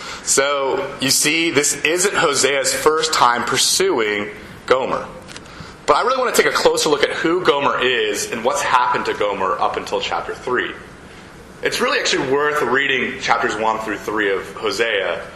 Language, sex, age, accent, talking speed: English, male, 30-49, American, 170 wpm